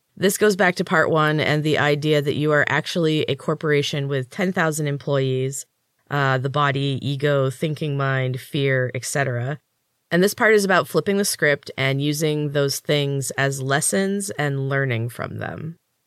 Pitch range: 130-160 Hz